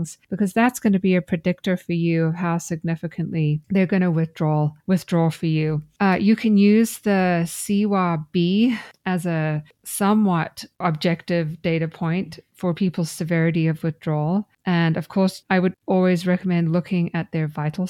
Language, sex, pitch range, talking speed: English, female, 160-185 Hz, 160 wpm